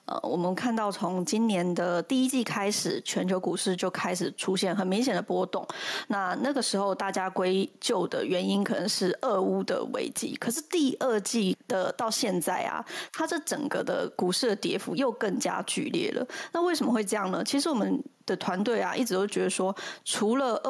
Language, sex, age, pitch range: Chinese, female, 20-39, 195-260 Hz